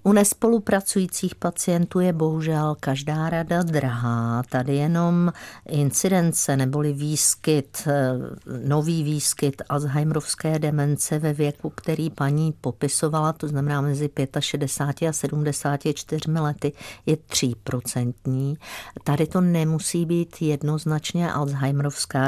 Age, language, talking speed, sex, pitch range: 50-69, Czech, 100 wpm, female, 145-165 Hz